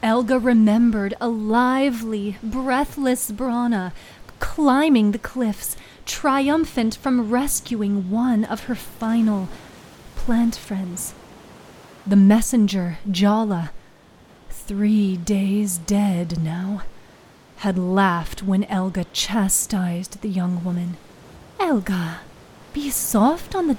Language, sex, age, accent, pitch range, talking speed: English, female, 30-49, American, 185-230 Hz, 95 wpm